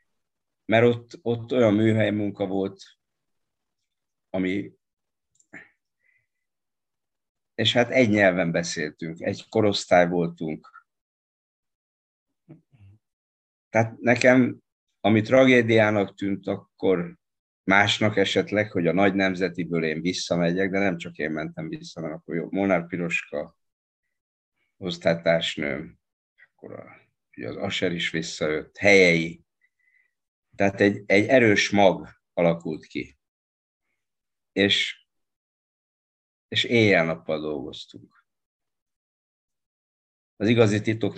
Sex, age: male, 50-69